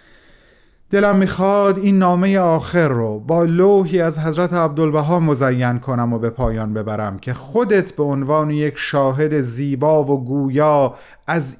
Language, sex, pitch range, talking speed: Persian, male, 130-170 Hz, 140 wpm